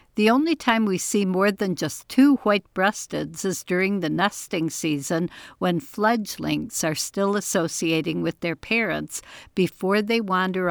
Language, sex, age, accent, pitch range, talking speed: English, female, 60-79, American, 170-215 Hz, 145 wpm